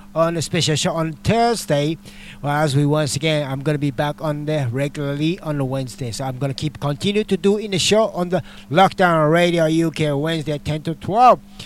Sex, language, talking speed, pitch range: male, English, 200 wpm, 145-170 Hz